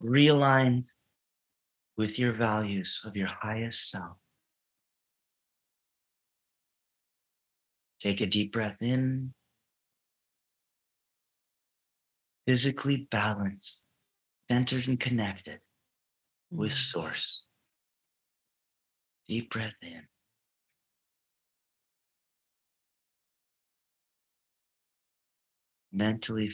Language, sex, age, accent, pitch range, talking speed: English, male, 50-69, American, 100-120 Hz, 55 wpm